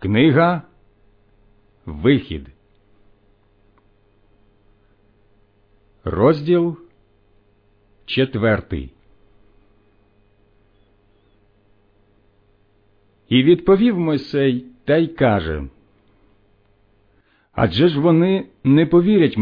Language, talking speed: Ukrainian, 45 wpm